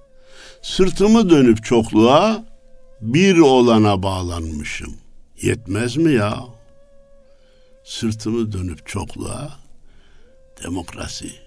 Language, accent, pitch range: Turkish, native, 100-130 Hz